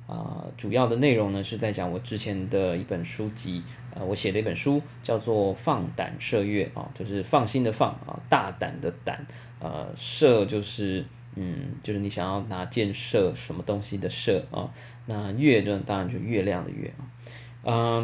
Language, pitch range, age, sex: Chinese, 100-125 Hz, 20-39, male